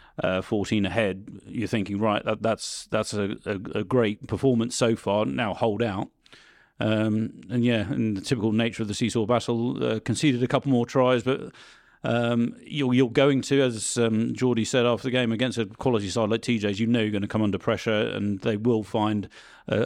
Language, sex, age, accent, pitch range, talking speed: English, male, 40-59, British, 105-120 Hz, 205 wpm